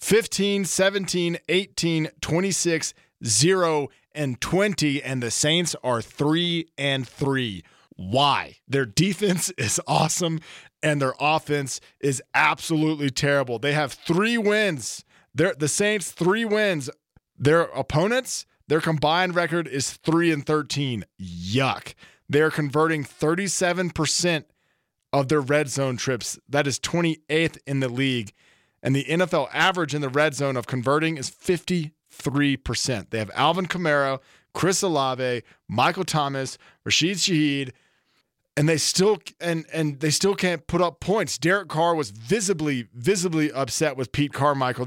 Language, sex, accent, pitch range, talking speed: English, male, American, 135-170 Hz, 135 wpm